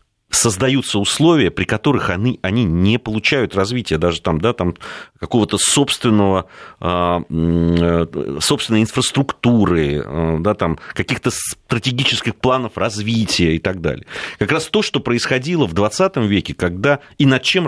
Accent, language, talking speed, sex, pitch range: native, Russian, 130 wpm, male, 90-130 Hz